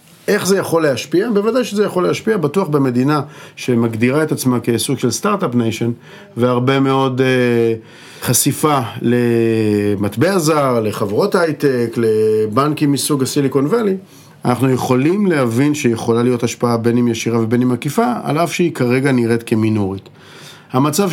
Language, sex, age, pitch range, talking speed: Hebrew, male, 40-59, 120-150 Hz, 135 wpm